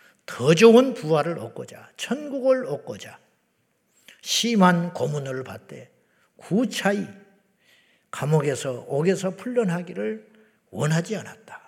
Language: Korean